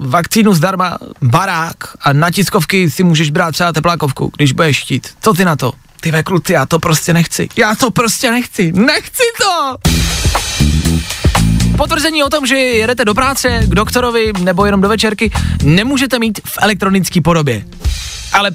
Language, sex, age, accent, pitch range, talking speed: Czech, male, 20-39, native, 140-200 Hz, 160 wpm